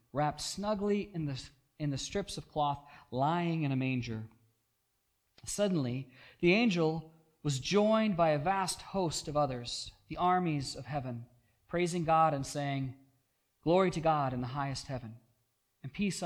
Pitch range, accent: 120-160 Hz, American